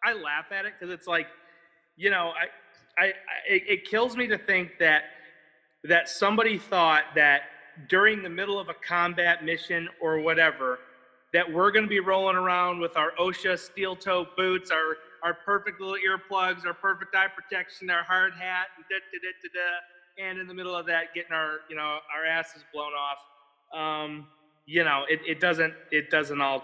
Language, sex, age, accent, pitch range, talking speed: English, male, 30-49, American, 140-185 Hz, 195 wpm